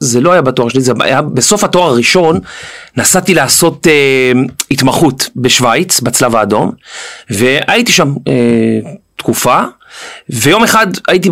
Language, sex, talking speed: Hebrew, male, 125 wpm